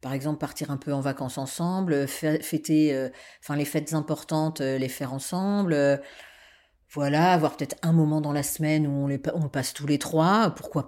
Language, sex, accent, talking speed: French, female, French, 195 wpm